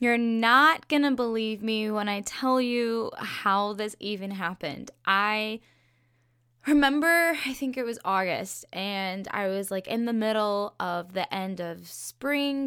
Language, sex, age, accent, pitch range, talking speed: English, female, 10-29, American, 180-230 Hz, 150 wpm